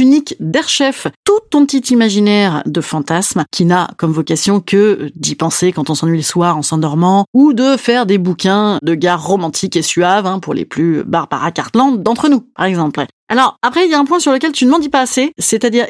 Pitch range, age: 175-250 Hz, 30-49